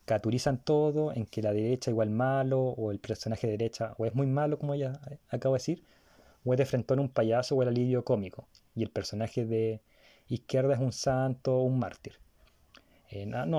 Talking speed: 200 wpm